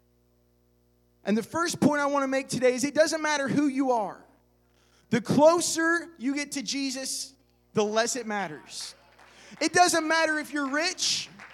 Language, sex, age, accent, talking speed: English, male, 20-39, American, 165 wpm